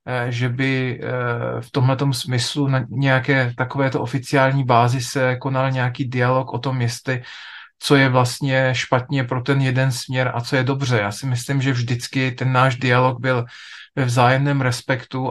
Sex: male